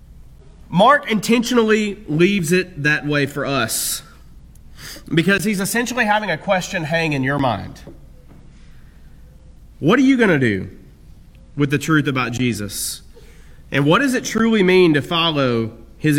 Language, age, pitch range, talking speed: English, 30-49, 135-190 Hz, 140 wpm